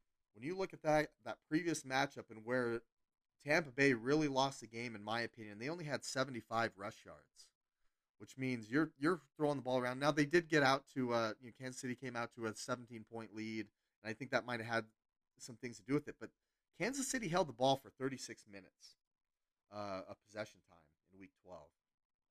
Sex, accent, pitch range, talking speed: male, American, 110-135 Hz, 220 wpm